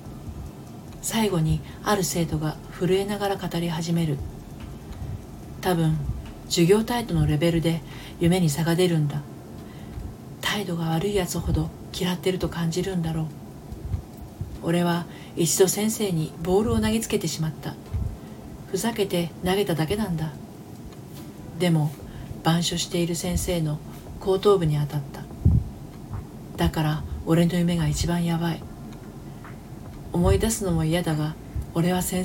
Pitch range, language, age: 155-180 Hz, Japanese, 40-59